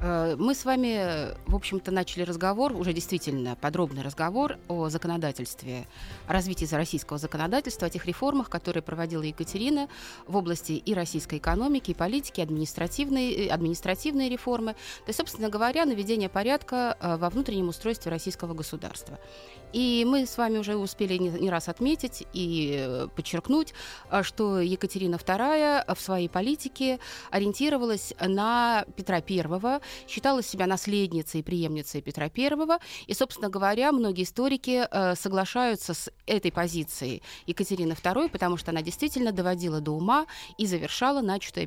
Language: Russian